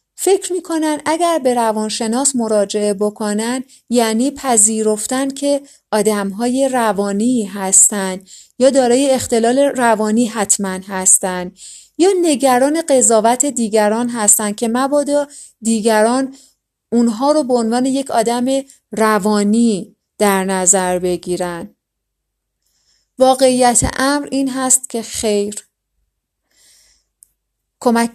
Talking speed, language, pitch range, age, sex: 95 wpm, Persian, 210-255 Hz, 30-49, female